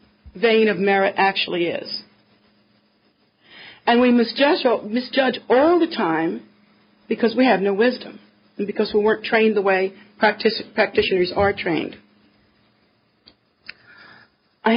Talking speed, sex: 115 wpm, female